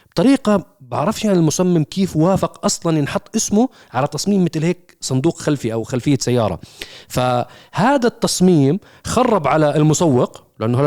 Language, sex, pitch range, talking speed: Arabic, male, 130-185 Hz, 135 wpm